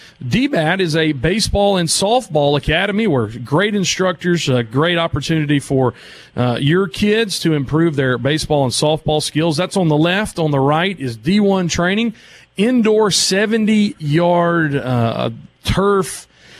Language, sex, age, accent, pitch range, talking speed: English, male, 40-59, American, 130-165 Hz, 135 wpm